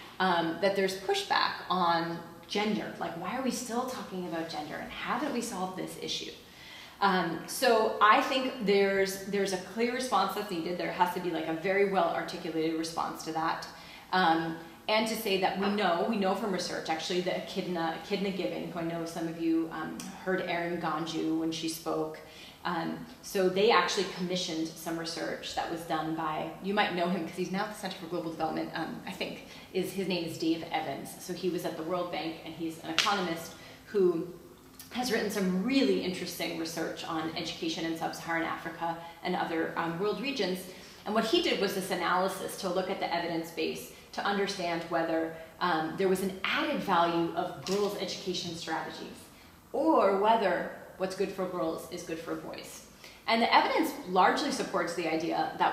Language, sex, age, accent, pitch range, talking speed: English, female, 30-49, American, 165-195 Hz, 190 wpm